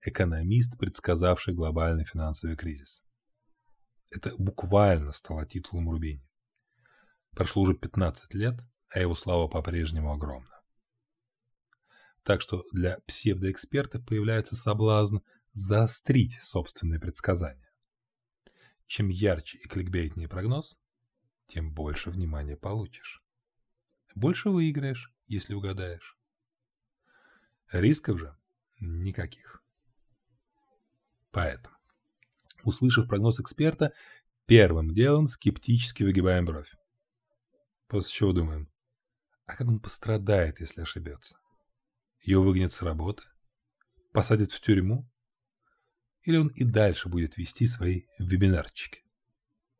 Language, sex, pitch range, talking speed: Russian, male, 90-120 Hz, 95 wpm